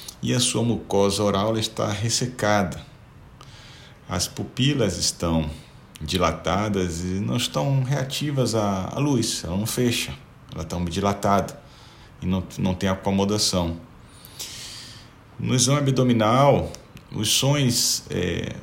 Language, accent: Portuguese, Brazilian